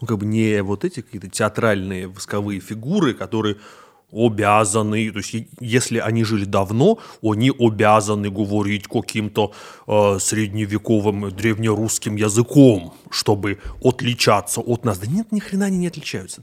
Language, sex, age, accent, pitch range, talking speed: Russian, male, 20-39, native, 105-130 Hz, 130 wpm